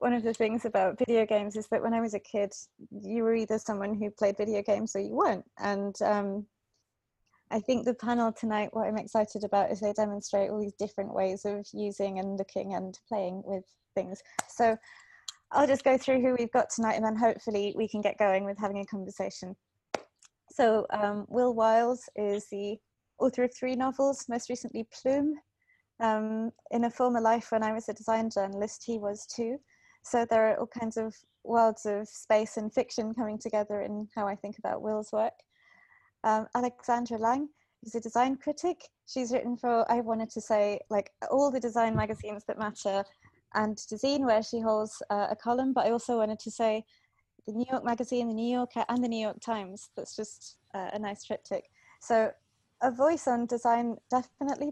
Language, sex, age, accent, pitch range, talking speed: English, female, 20-39, British, 210-245 Hz, 195 wpm